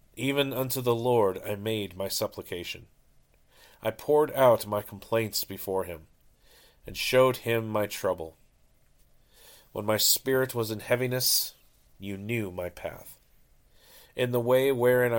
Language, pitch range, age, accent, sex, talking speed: English, 95-120 Hz, 40-59, American, male, 135 wpm